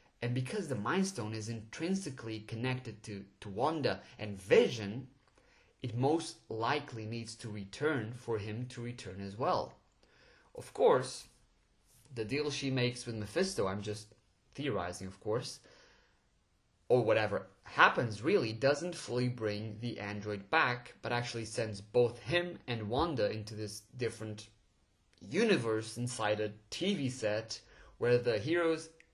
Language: English